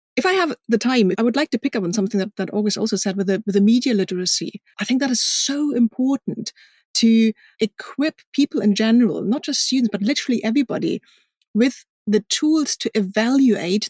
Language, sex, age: English, female, 30-49